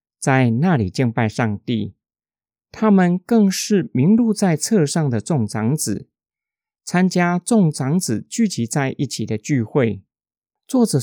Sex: male